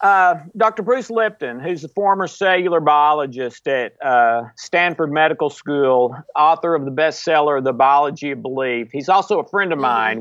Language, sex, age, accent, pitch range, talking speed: English, male, 50-69, American, 145-190 Hz, 165 wpm